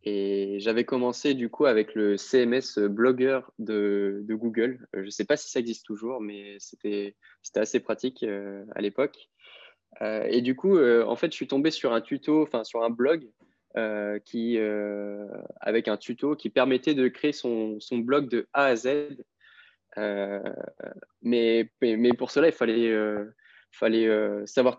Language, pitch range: French, 105-130 Hz